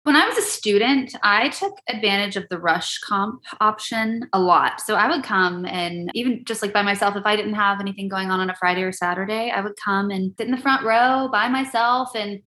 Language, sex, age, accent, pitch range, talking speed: English, female, 20-39, American, 185-240 Hz, 235 wpm